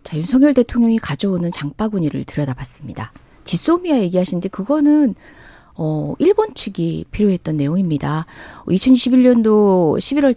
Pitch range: 165-265 Hz